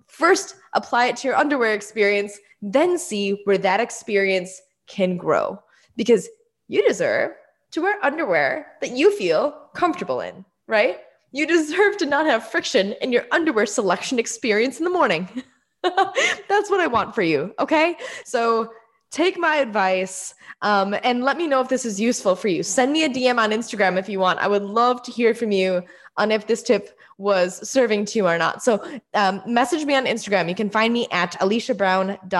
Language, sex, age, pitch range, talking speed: English, female, 10-29, 195-295 Hz, 185 wpm